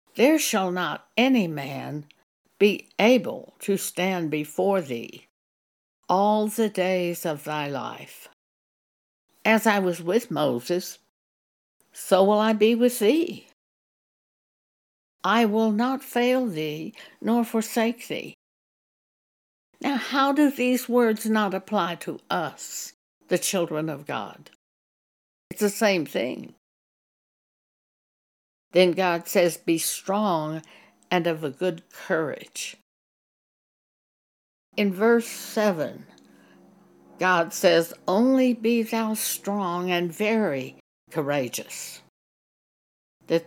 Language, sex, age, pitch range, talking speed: English, female, 60-79, 170-220 Hz, 105 wpm